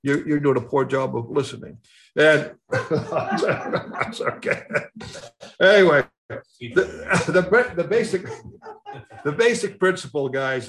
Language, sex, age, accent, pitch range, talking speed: English, male, 60-79, American, 130-180 Hz, 95 wpm